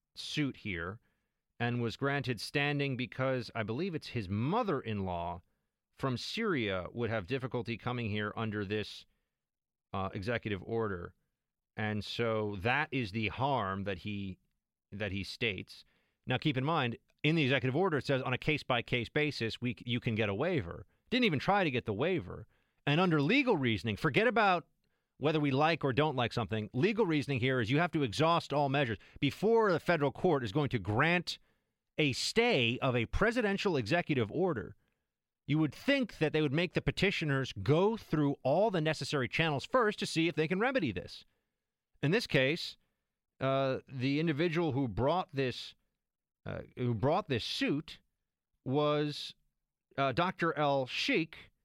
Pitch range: 115-155 Hz